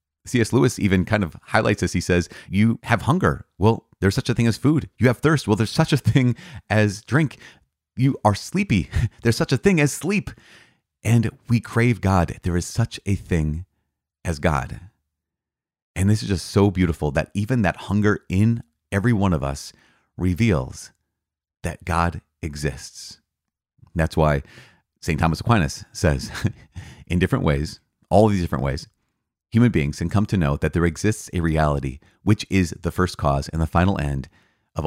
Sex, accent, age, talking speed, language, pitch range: male, American, 30-49, 175 wpm, English, 80-110 Hz